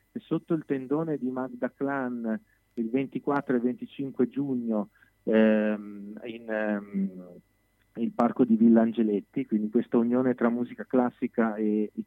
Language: Italian